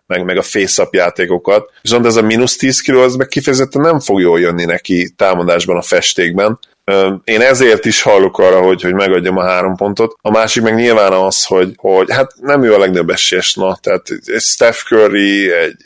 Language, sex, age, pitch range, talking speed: Hungarian, male, 20-39, 95-110 Hz, 190 wpm